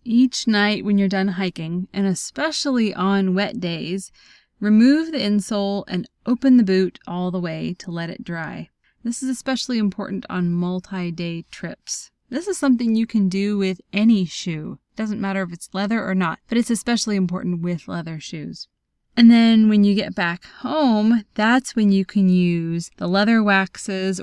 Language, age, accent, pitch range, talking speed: English, 20-39, American, 185-225 Hz, 175 wpm